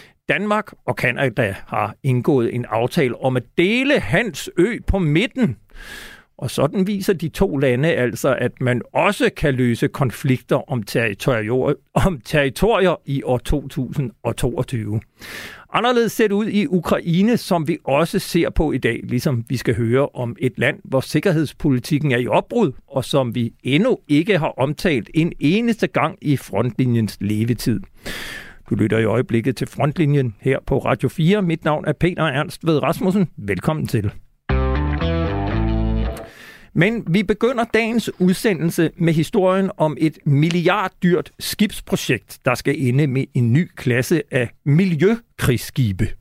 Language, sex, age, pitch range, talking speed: Danish, male, 60-79, 125-170 Hz, 140 wpm